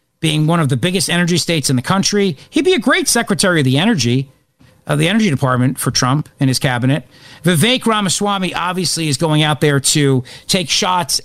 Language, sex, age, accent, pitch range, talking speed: English, male, 50-69, American, 135-185 Hz, 195 wpm